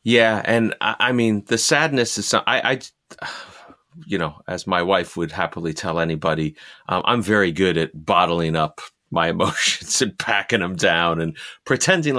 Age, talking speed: 30-49, 170 wpm